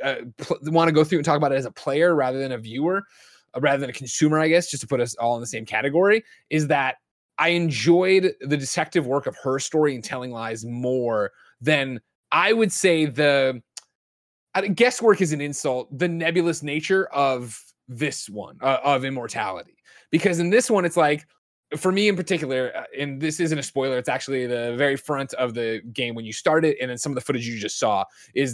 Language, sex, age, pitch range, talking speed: English, male, 20-39, 130-175 Hz, 210 wpm